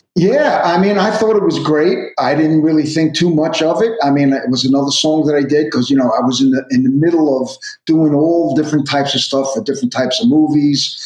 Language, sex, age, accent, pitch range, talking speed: English, male, 50-69, American, 130-160 Hz, 255 wpm